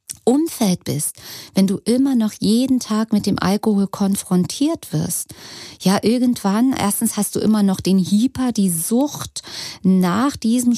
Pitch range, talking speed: 175-225 Hz, 145 wpm